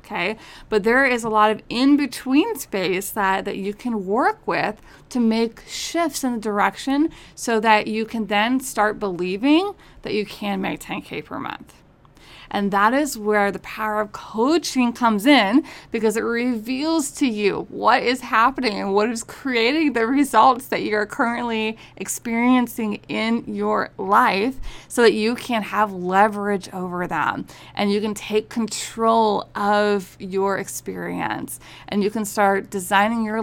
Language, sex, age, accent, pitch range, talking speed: English, female, 30-49, American, 205-250 Hz, 155 wpm